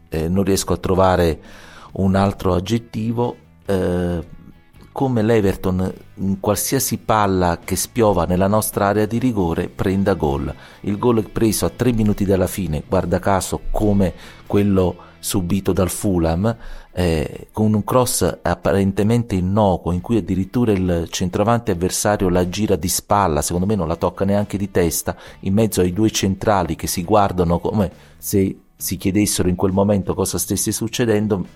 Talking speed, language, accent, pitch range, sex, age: 150 wpm, Italian, native, 90-105 Hz, male, 40-59